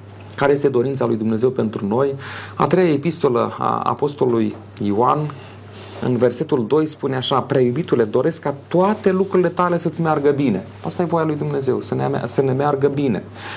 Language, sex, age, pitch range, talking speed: Romanian, male, 40-59, 115-155 Hz, 160 wpm